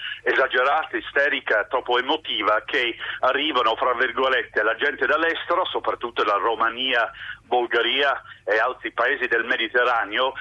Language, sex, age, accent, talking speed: Italian, male, 50-69, native, 115 wpm